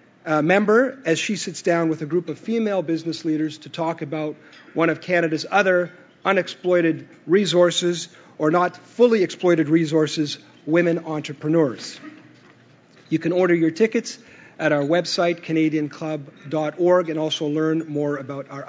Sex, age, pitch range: male, 40-59, 150-180 Hz